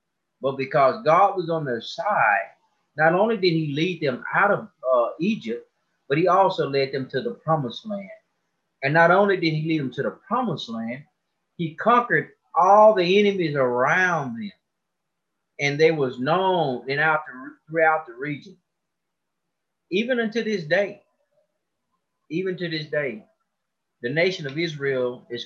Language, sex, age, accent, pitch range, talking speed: English, male, 30-49, American, 130-185 Hz, 150 wpm